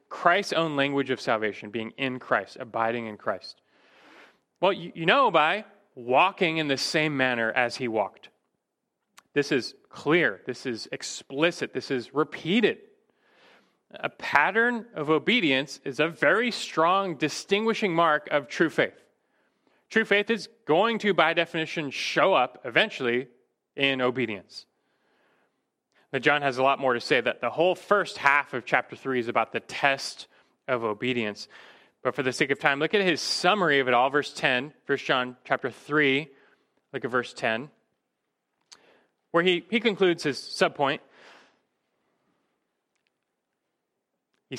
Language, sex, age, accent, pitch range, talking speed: English, male, 30-49, American, 130-180 Hz, 150 wpm